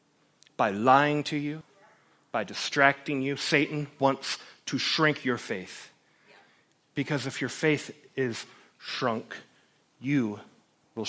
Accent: American